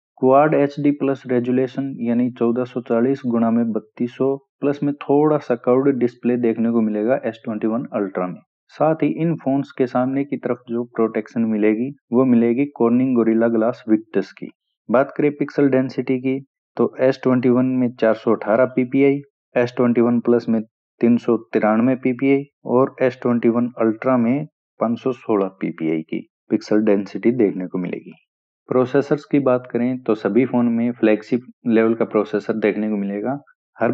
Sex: male